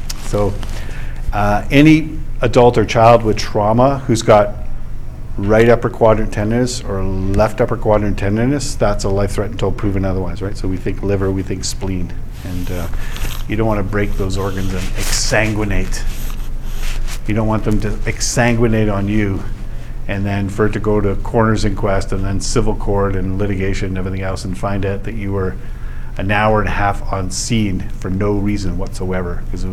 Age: 50-69